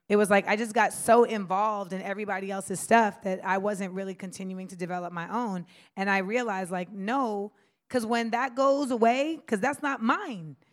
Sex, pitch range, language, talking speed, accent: female, 185-240 Hz, English, 195 wpm, American